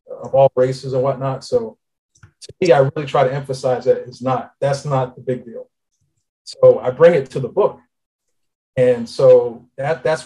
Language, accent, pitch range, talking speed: English, American, 125-160 Hz, 185 wpm